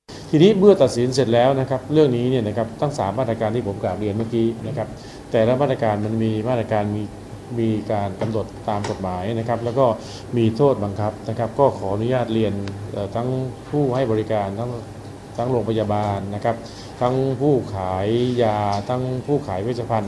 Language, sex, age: Thai, male, 20-39